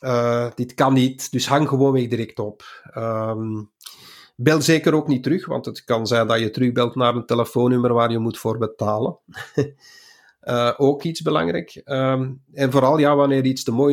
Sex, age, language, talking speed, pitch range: male, 50-69, Dutch, 170 wpm, 120-145 Hz